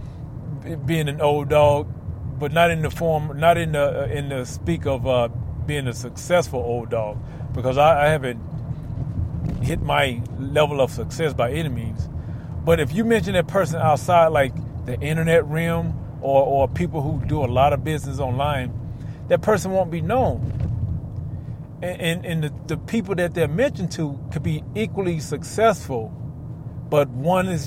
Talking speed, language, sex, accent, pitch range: 165 wpm, English, male, American, 120-160 Hz